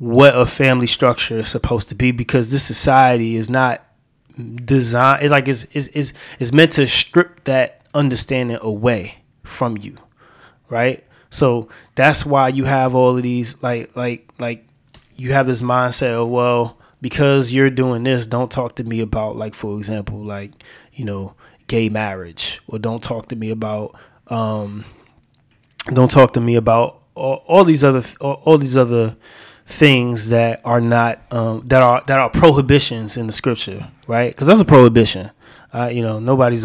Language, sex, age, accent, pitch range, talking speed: English, male, 20-39, American, 110-135 Hz, 170 wpm